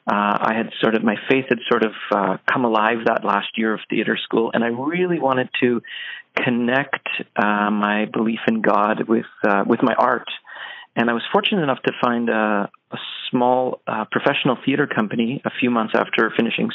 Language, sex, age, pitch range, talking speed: English, male, 40-59, 115-145 Hz, 195 wpm